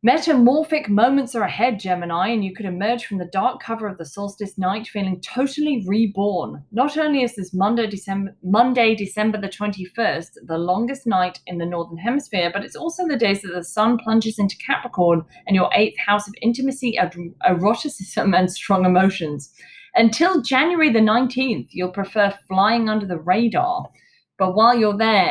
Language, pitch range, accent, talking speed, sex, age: English, 190-235 Hz, British, 170 wpm, female, 20-39